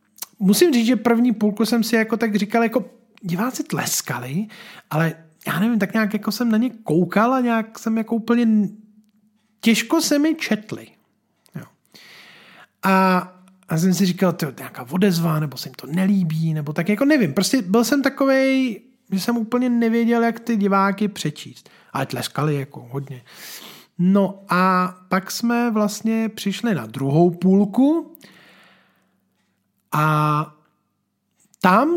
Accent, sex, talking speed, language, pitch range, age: native, male, 145 wpm, Czech, 170-230 Hz, 40-59